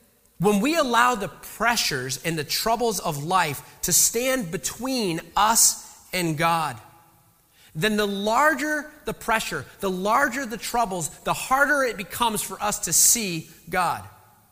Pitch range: 165-240 Hz